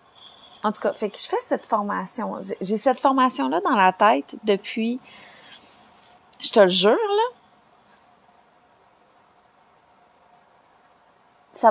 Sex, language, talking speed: female, French, 120 wpm